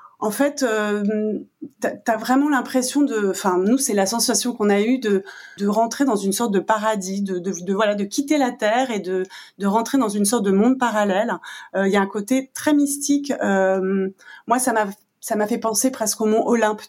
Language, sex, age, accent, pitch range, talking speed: French, female, 30-49, French, 195-245 Hz, 220 wpm